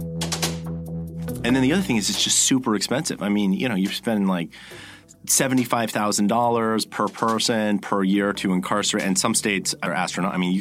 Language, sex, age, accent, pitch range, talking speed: English, male, 30-49, American, 100-130 Hz, 185 wpm